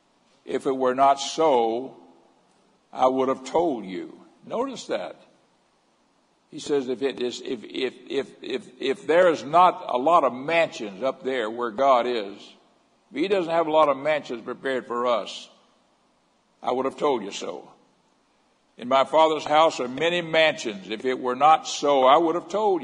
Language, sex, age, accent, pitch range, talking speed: English, male, 60-79, American, 130-165 Hz, 175 wpm